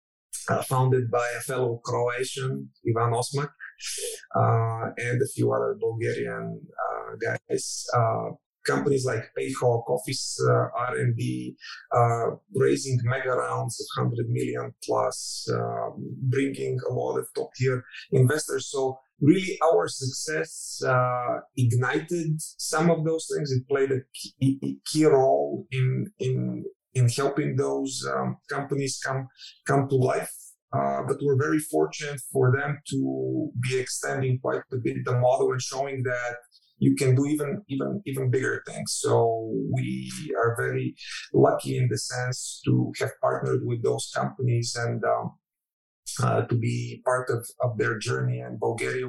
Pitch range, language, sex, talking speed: 80-135 Hz, Croatian, male, 145 wpm